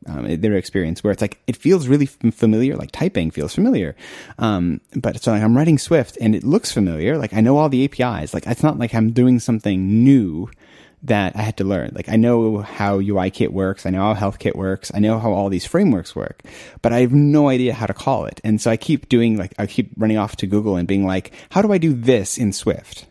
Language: English